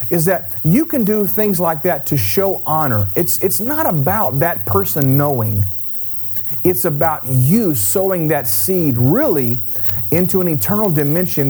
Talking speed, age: 150 wpm, 40-59